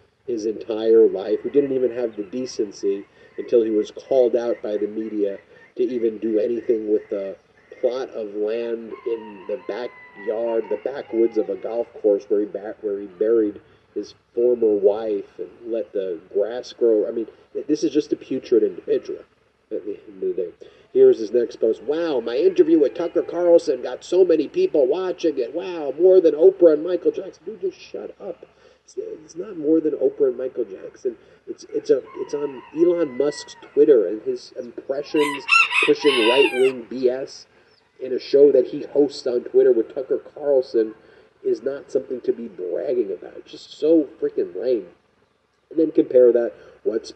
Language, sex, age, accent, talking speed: English, male, 40-59, American, 170 wpm